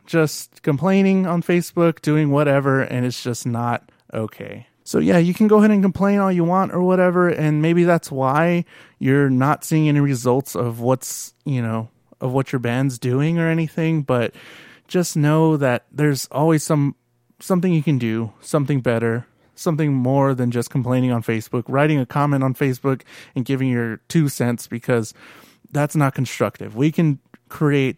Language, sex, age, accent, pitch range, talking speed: English, male, 20-39, American, 125-160 Hz, 175 wpm